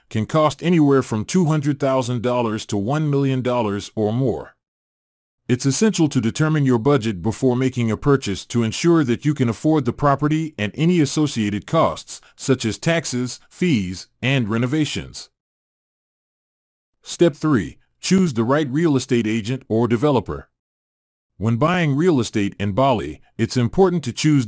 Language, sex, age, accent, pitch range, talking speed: Russian, male, 40-59, American, 105-150 Hz, 140 wpm